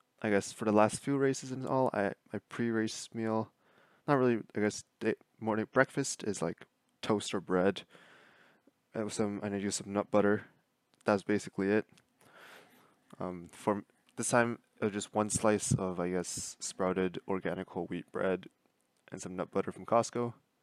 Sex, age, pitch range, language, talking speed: male, 20-39, 100-115 Hz, English, 170 wpm